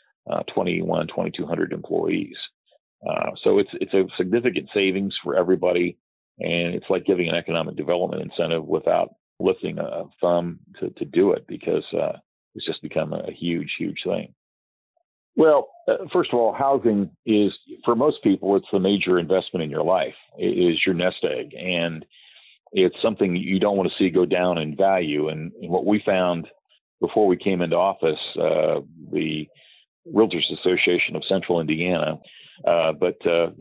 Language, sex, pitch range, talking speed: English, male, 85-100 Hz, 160 wpm